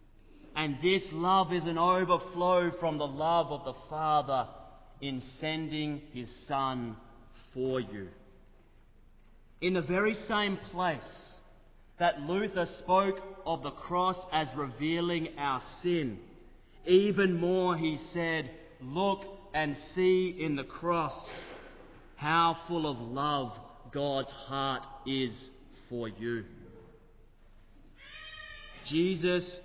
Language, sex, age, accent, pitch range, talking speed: English, male, 30-49, Australian, 135-180 Hz, 105 wpm